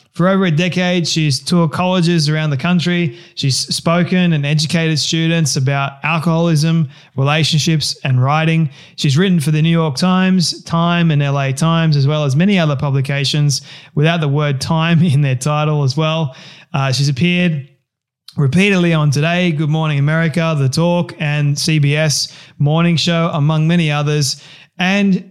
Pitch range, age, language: 145-170 Hz, 20-39, English